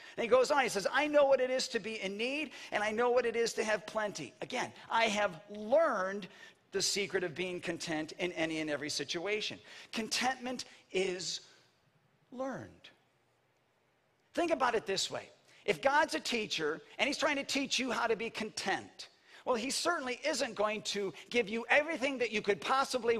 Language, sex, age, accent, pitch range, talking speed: English, male, 50-69, American, 185-270 Hz, 190 wpm